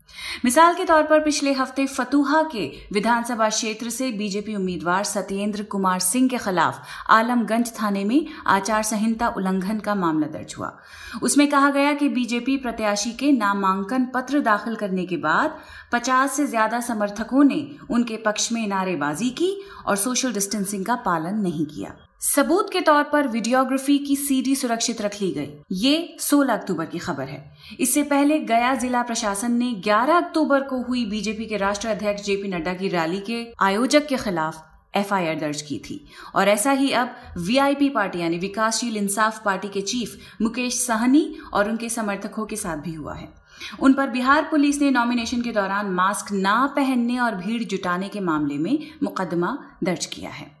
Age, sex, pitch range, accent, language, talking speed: 30-49, female, 200-275 Hz, native, Hindi, 170 wpm